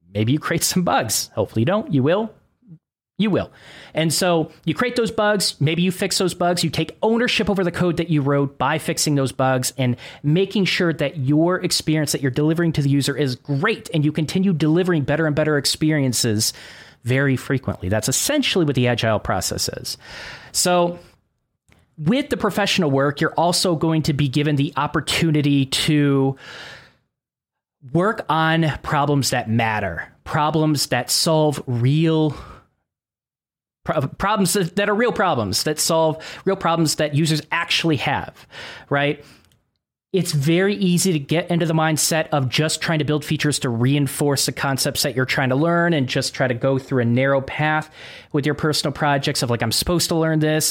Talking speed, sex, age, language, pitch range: 175 wpm, male, 30-49, English, 135-170 Hz